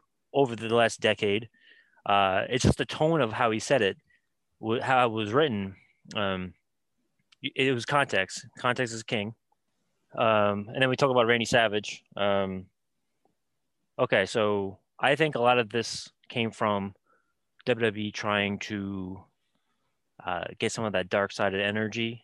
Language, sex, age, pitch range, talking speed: English, male, 20-39, 100-120 Hz, 150 wpm